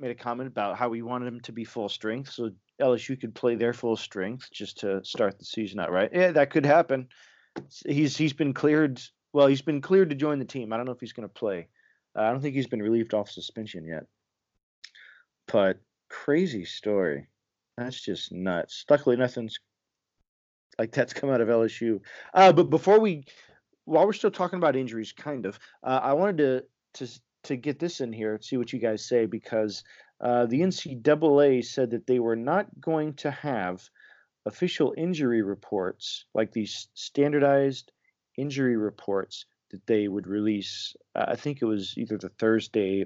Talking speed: 185 wpm